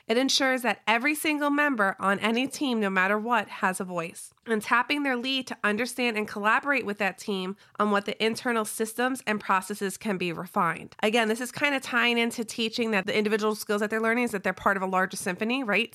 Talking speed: 225 wpm